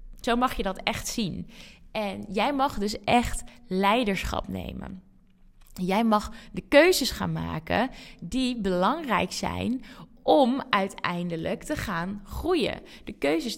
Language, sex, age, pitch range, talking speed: Dutch, female, 20-39, 200-255 Hz, 130 wpm